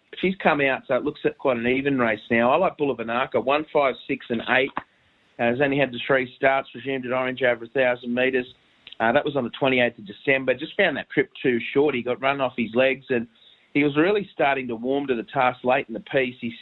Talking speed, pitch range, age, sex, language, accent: 255 wpm, 120-140 Hz, 40-59, male, English, Australian